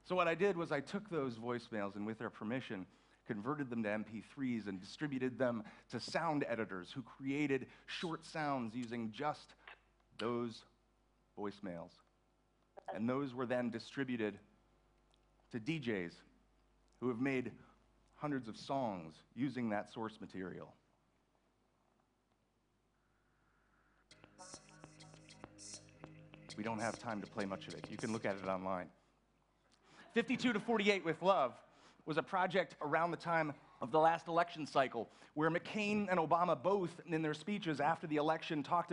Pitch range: 125-170 Hz